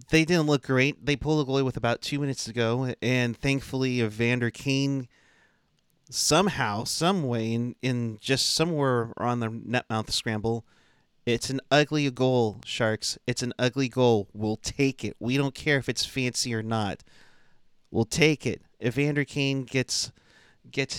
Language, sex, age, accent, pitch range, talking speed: English, male, 30-49, American, 115-140 Hz, 165 wpm